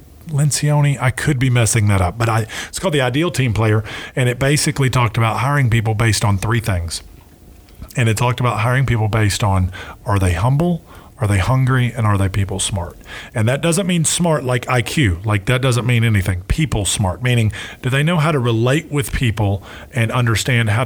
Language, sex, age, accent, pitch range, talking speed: English, male, 40-59, American, 105-135 Hz, 205 wpm